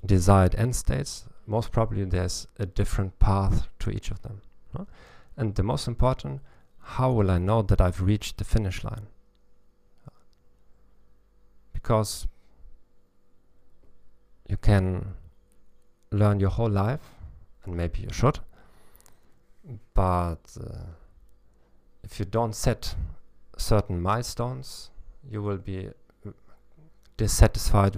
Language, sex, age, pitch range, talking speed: German, male, 50-69, 85-105 Hz, 105 wpm